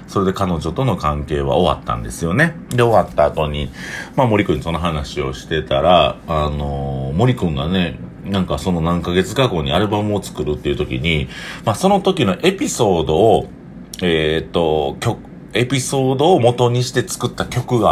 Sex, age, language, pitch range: male, 40-59, Japanese, 75-105 Hz